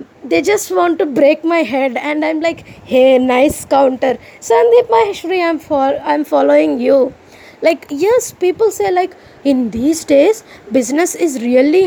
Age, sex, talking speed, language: 20-39, female, 155 wpm, English